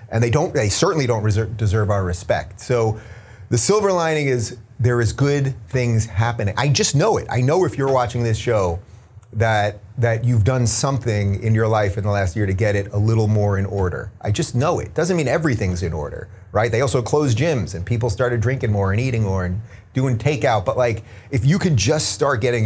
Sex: male